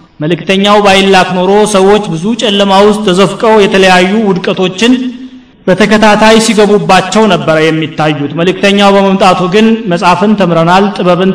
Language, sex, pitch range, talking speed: Amharic, male, 175-220 Hz, 105 wpm